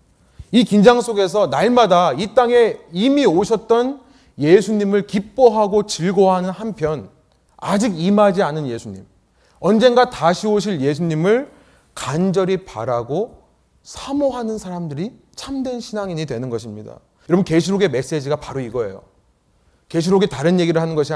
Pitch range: 165-245 Hz